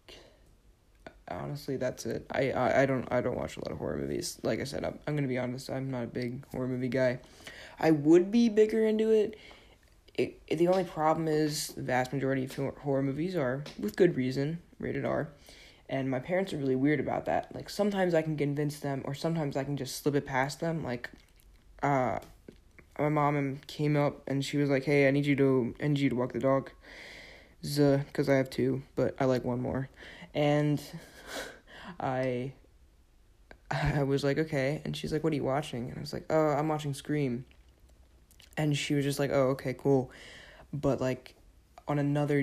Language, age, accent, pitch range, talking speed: English, 20-39, American, 130-150 Hz, 200 wpm